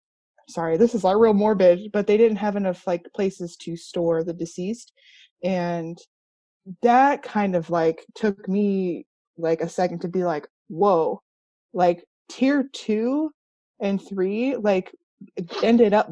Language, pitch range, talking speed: English, 175-240 Hz, 145 wpm